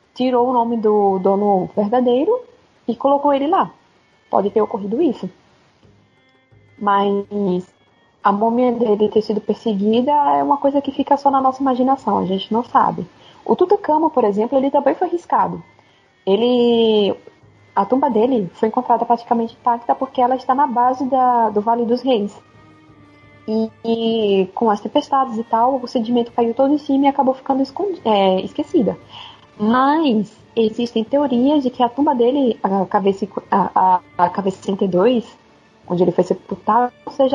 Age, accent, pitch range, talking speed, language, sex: 20-39, Brazilian, 210-270 Hz, 155 wpm, Portuguese, female